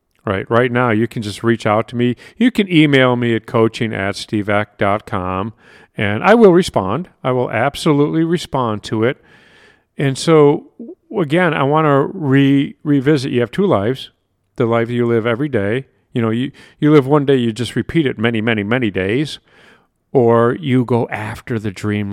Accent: American